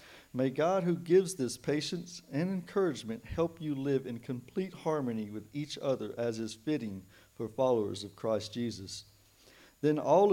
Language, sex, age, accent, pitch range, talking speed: English, male, 50-69, American, 110-145 Hz, 155 wpm